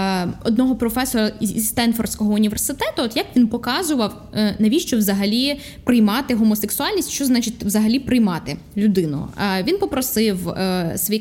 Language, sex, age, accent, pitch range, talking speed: Ukrainian, female, 10-29, native, 210-265 Hz, 110 wpm